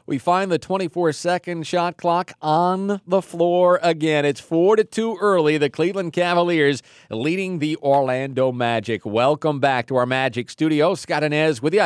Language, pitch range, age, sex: English, 145-195 Hz, 40-59, male